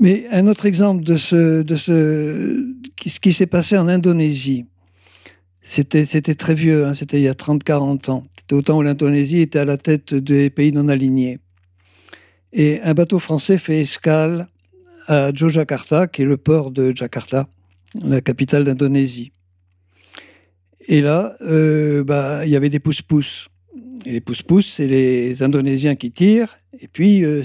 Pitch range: 125-175 Hz